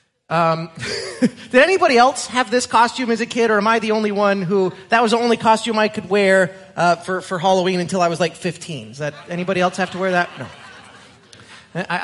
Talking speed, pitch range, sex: 215 wpm, 155-210 Hz, male